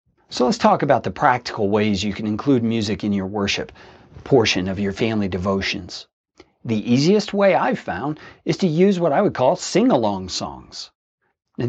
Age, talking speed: 40-59, 175 wpm